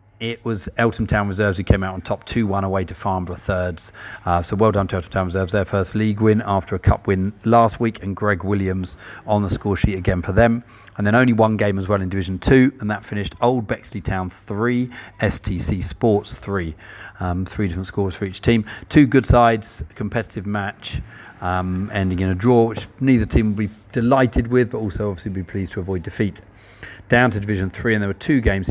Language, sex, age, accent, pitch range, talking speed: English, male, 40-59, British, 95-110 Hz, 220 wpm